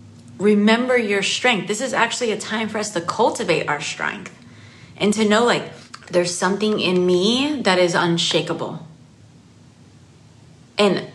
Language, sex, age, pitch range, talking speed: English, female, 30-49, 180-250 Hz, 140 wpm